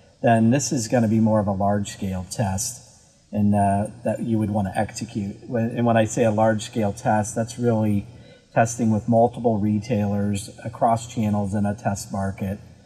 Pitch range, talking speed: 100-115 Hz, 175 wpm